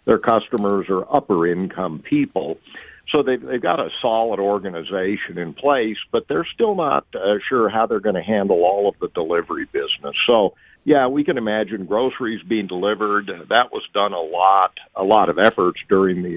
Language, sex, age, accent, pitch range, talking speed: English, male, 50-69, American, 95-125 Hz, 180 wpm